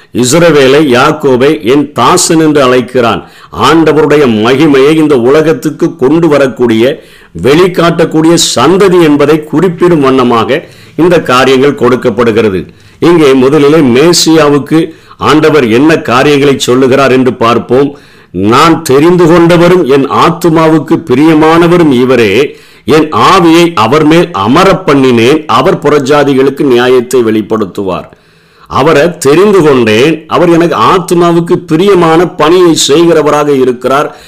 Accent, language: native, Tamil